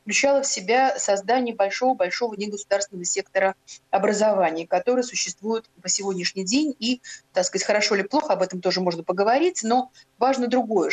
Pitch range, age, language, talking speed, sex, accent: 190-250 Hz, 30-49, Russian, 150 wpm, female, native